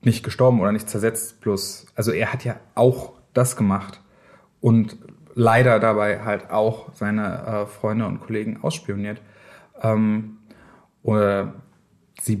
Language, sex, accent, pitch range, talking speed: German, male, German, 105-125 Hz, 130 wpm